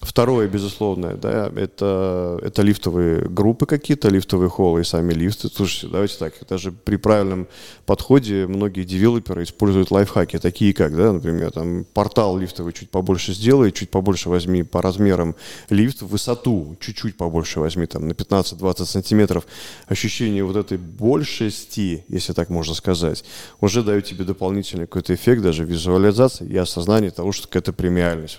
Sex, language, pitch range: male, Russian, 90-105 Hz